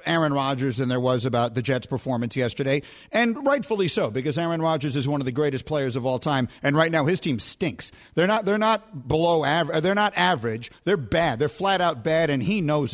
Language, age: English, 50-69